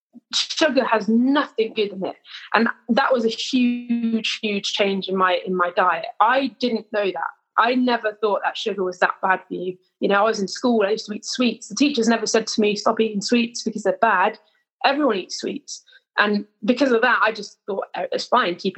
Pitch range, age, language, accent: 200-245 Hz, 20-39, English, British